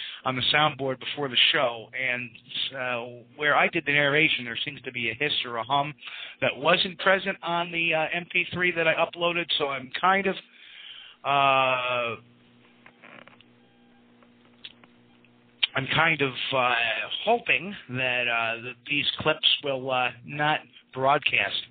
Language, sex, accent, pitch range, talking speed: English, male, American, 120-160 Hz, 140 wpm